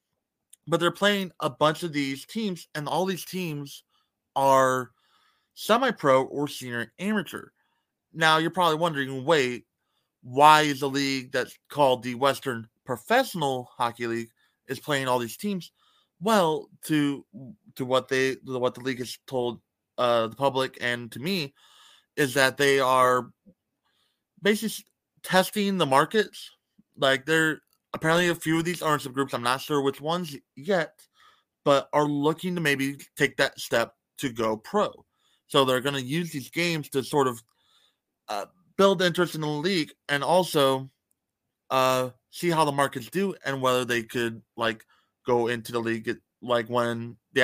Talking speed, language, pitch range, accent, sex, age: 155 wpm, English, 125-175 Hz, American, male, 30-49